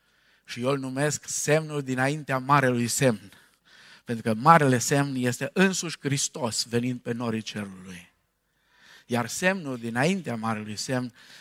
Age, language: 50-69, Romanian